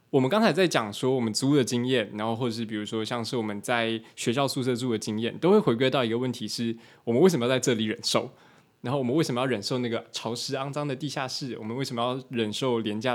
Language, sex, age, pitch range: Chinese, male, 20-39, 115-145 Hz